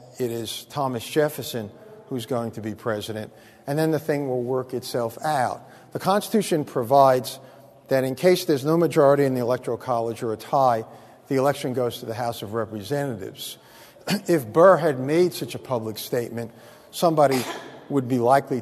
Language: English